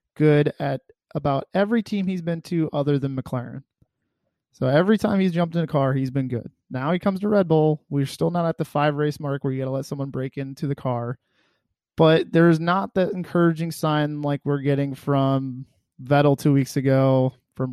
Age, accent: 20-39, American